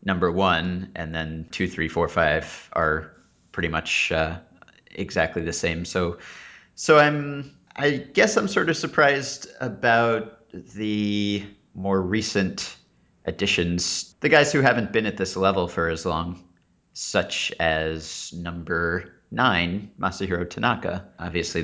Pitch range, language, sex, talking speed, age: 85-100 Hz, English, male, 130 wpm, 30-49